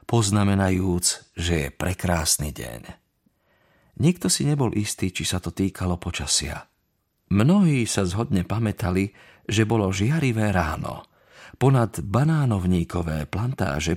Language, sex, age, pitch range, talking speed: Slovak, male, 40-59, 90-115 Hz, 105 wpm